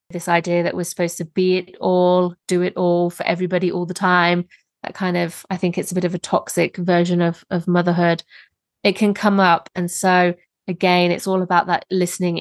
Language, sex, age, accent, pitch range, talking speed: English, female, 20-39, British, 170-190 Hz, 215 wpm